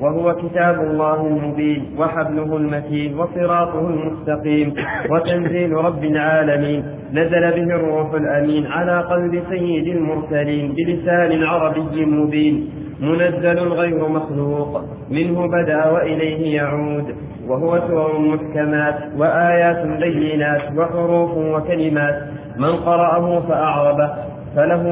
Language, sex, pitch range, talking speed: Arabic, male, 150-170 Hz, 95 wpm